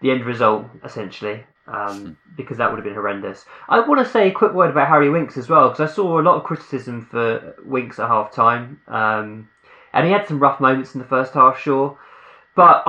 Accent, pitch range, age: British, 125-160 Hz, 20-39